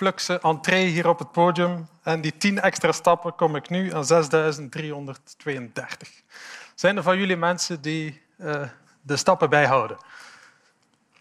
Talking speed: 140 wpm